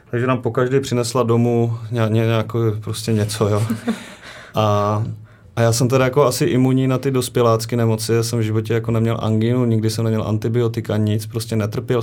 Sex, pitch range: male, 115-125 Hz